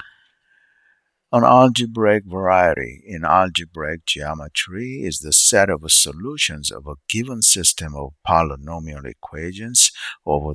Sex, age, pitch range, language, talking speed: male, 60-79, 70-90 Hz, English, 110 wpm